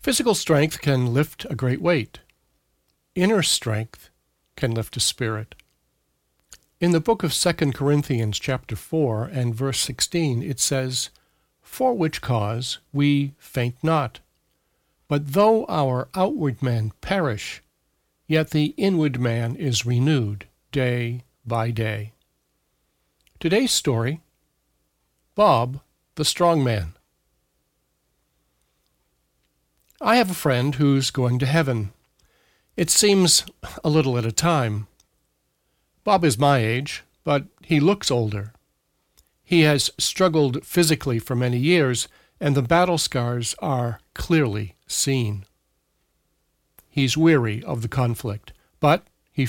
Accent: American